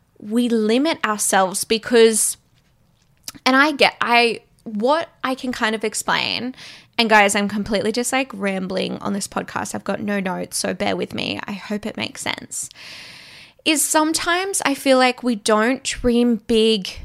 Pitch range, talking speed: 200-245 Hz, 160 wpm